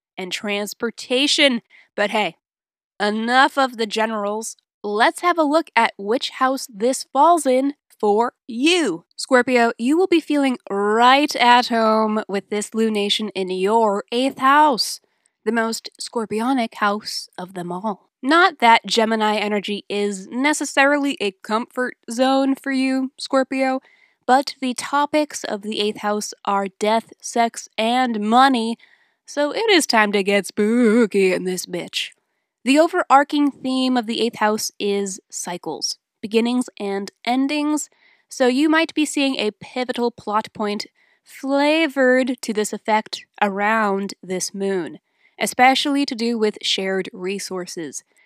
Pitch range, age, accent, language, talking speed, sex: 210-265 Hz, 10-29, American, English, 135 wpm, female